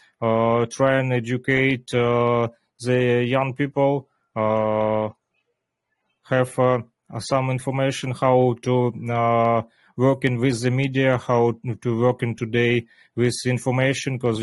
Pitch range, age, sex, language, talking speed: 115-130 Hz, 30-49, male, Russian, 120 wpm